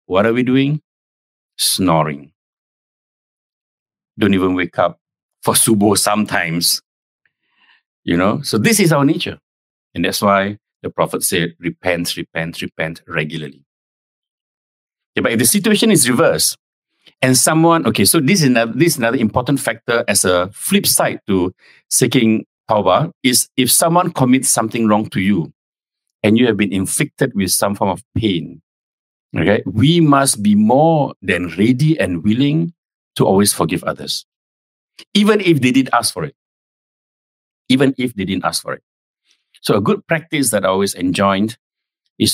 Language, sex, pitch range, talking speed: English, male, 95-140 Hz, 150 wpm